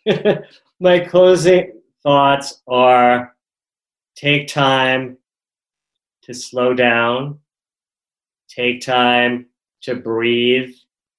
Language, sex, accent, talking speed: English, male, American, 70 wpm